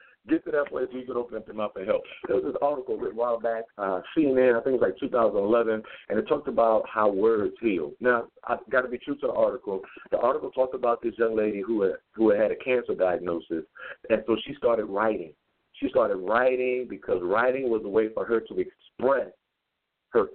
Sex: male